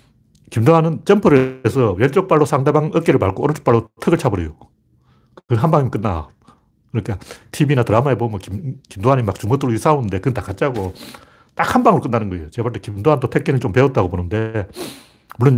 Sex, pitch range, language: male, 110-145 Hz, Korean